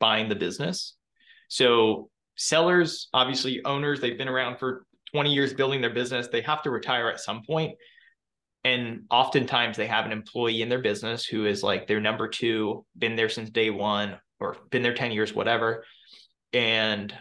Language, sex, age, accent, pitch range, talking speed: English, male, 20-39, American, 110-135 Hz, 175 wpm